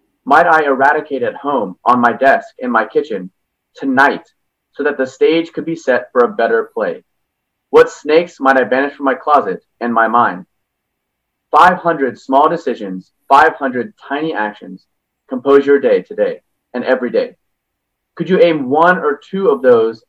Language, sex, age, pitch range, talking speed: English, male, 30-49, 130-175 Hz, 165 wpm